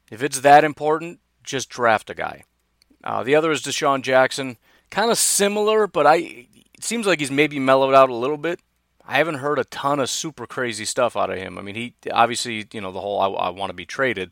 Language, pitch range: English, 105-135 Hz